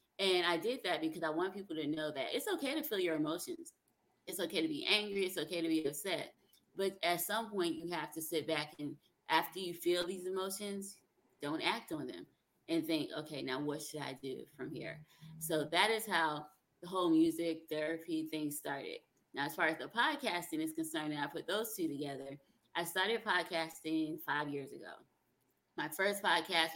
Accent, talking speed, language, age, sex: American, 195 wpm, English, 20-39, female